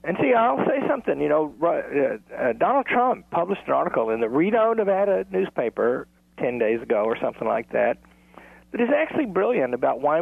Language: English